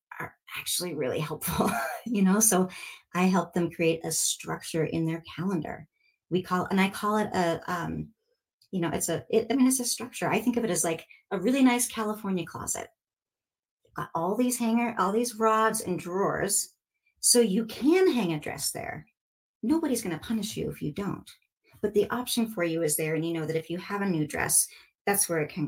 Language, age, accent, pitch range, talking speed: English, 40-59, American, 165-215 Hz, 210 wpm